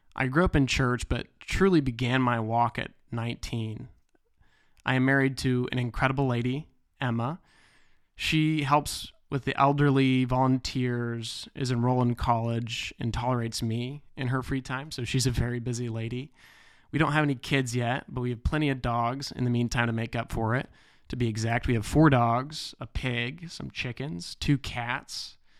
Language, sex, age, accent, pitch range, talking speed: English, male, 20-39, American, 120-135 Hz, 180 wpm